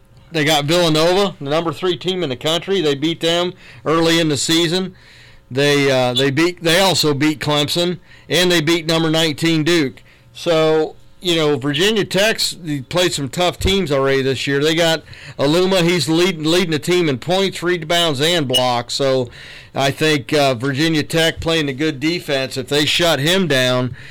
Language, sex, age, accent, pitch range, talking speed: English, male, 40-59, American, 130-160 Hz, 175 wpm